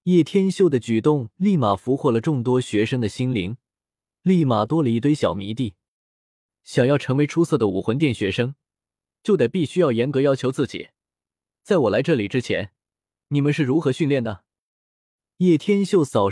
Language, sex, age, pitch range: Chinese, male, 20-39, 110-155 Hz